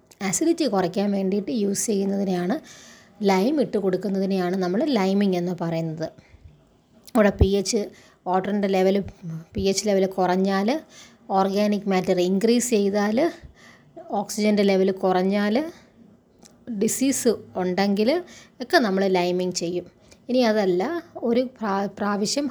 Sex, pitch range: female, 185-235 Hz